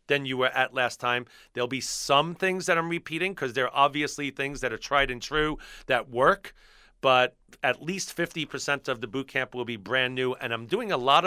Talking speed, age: 225 wpm, 40-59